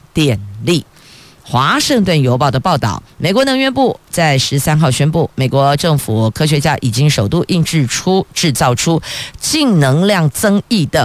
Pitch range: 130-190 Hz